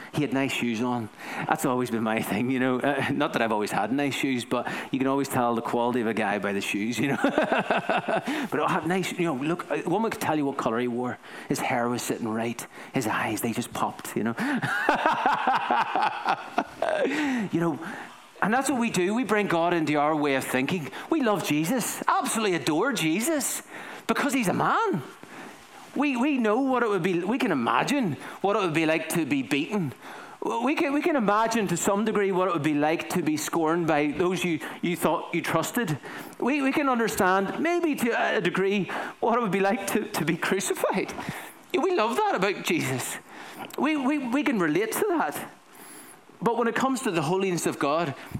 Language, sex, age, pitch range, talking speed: English, male, 40-59, 140-235 Hz, 205 wpm